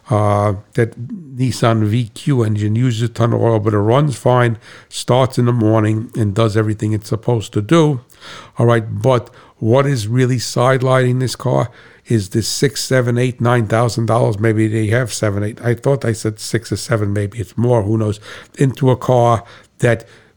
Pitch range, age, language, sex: 110-125 Hz, 60-79, English, male